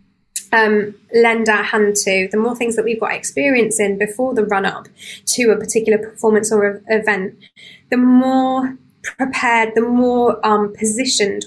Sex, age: female, 20-39